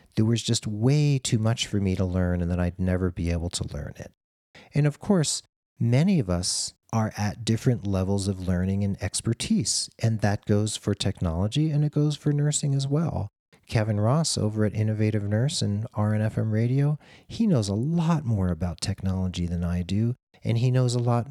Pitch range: 95-120 Hz